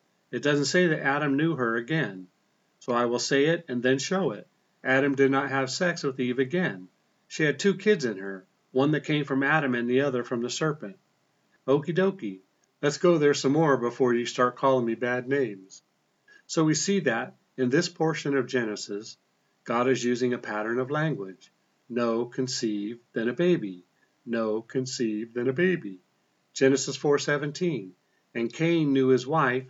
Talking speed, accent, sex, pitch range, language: 180 wpm, American, male, 120-150 Hz, English